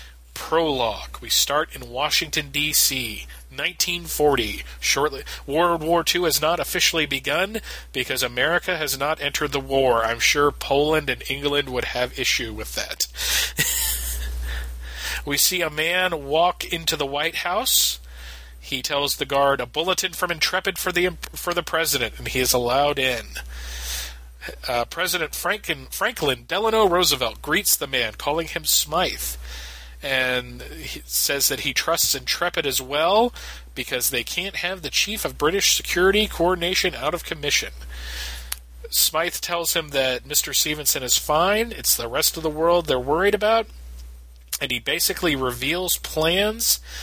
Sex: male